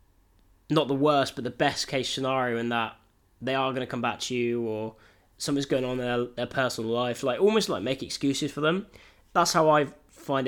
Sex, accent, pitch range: male, British, 110-140 Hz